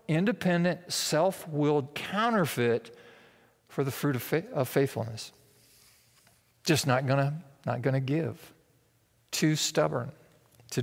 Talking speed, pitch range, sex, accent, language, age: 110 wpm, 135-185 Hz, male, American, English, 50-69